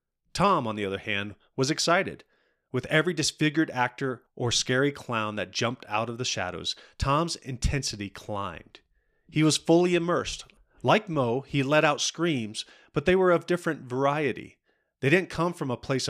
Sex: male